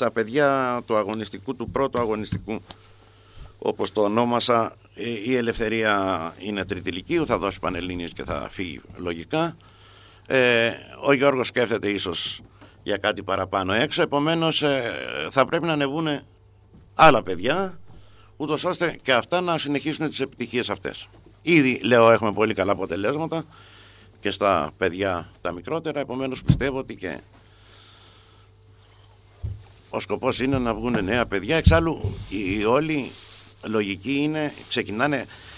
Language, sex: Greek, male